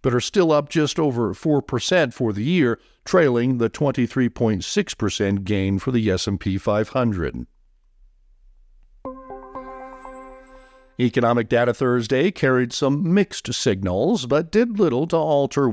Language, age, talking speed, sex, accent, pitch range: English, 50-69, 115 wpm, male, American, 110-145 Hz